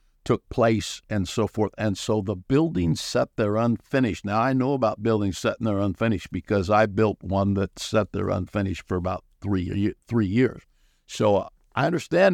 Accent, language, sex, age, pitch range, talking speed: American, English, male, 60-79, 95-110 Hz, 180 wpm